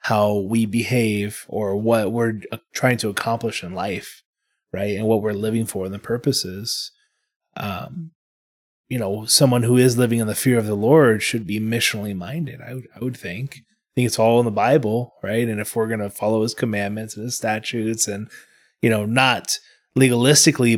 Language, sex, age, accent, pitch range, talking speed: English, male, 20-39, American, 105-125 Hz, 190 wpm